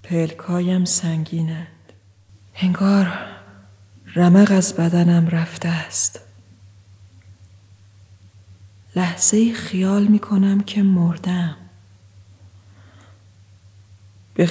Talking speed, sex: 60 wpm, female